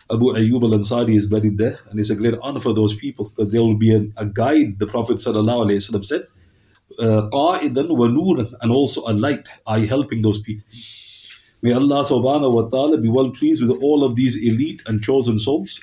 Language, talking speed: English, 195 wpm